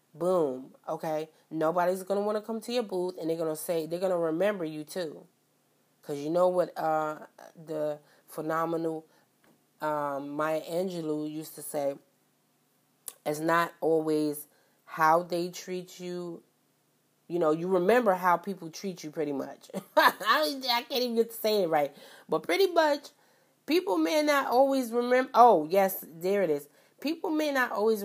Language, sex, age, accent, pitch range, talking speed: English, female, 30-49, American, 160-220 Hz, 165 wpm